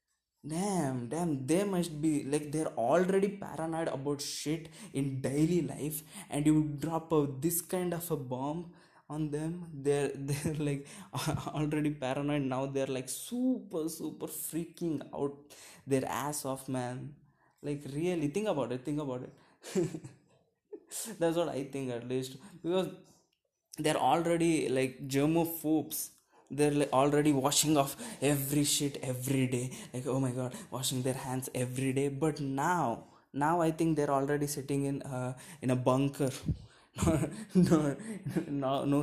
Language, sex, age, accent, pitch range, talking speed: English, male, 20-39, Indian, 130-160 Hz, 140 wpm